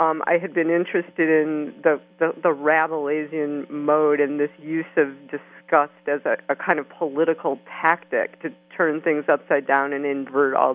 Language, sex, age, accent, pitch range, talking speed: English, female, 50-69, American, 145-180 Hz, 175 wpm